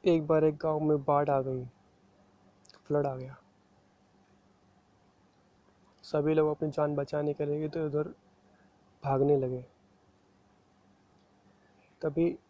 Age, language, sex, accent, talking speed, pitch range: 20-39, Hindi, male, native, 105 wpm, 130-150 Hz